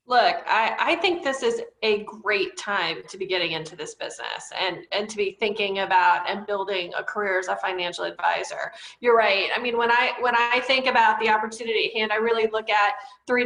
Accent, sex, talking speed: American, female, 215 wpm